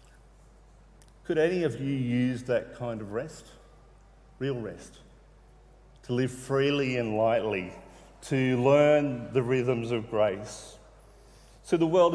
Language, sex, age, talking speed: English, male, 40-59, 125 wpm